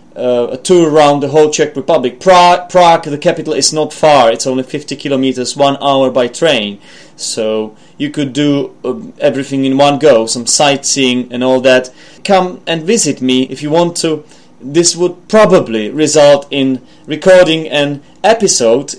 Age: 30-49